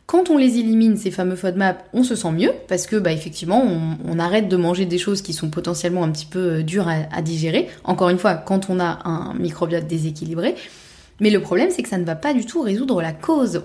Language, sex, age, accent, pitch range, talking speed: French, female, 20-39, French, 175-215 Hz, 240 wpm